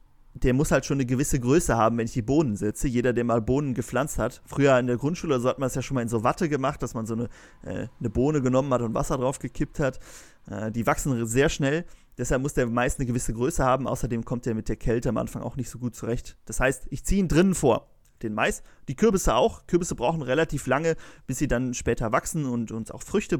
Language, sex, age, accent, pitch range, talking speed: German, male, 30-49, German, 120-150 Hz, 255 wpm